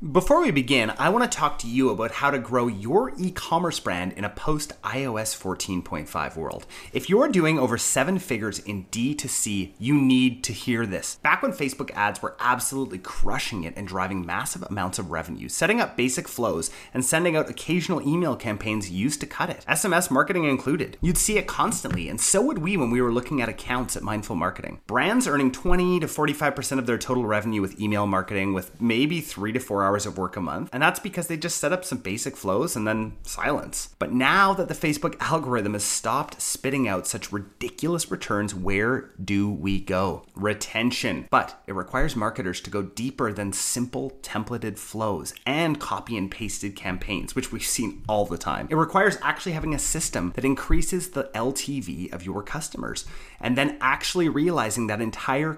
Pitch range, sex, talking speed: 100-145 Hz, male, 195 wpm